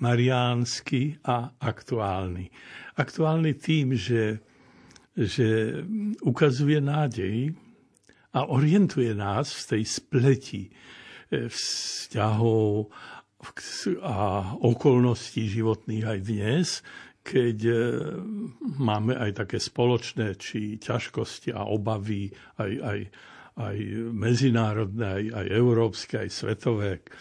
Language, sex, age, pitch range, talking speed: Slovak, male, 60-79, 110-140 Hz, 85 wpm